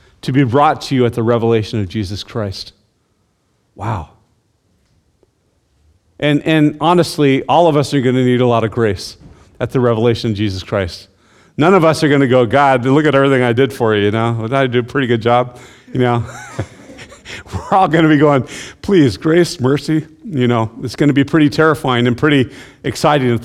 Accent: American